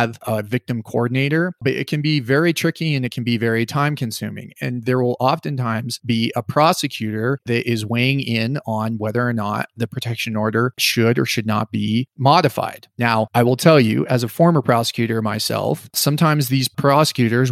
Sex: male